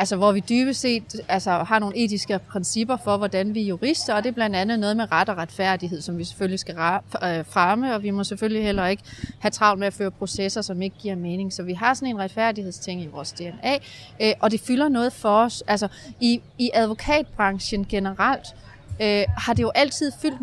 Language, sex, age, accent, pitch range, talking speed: Danish, female, 30-49, native, 205-255 Hz, 210 wpm